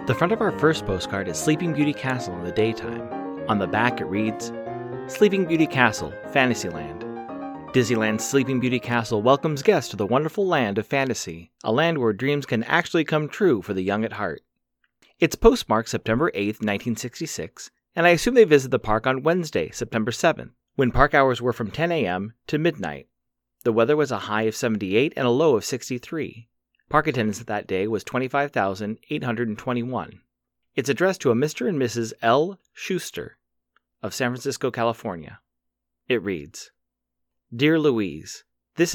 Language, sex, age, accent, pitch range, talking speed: English, male, 30-49, American, 105-140 Hz, 165 wpm